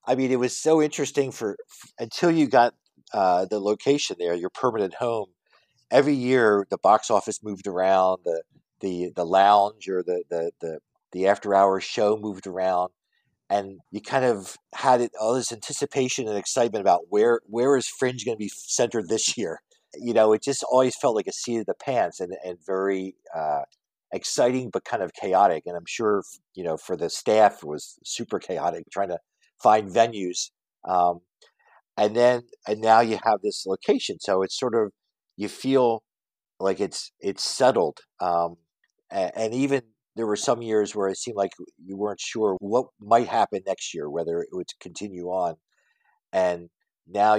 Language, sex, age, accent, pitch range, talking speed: English, male, 50-69, American, 95-125 Hz, 180 wpm